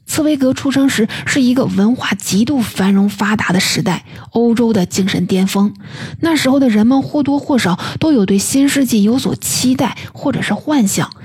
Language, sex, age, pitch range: Chinese, female, 20-39, 190-250 Hz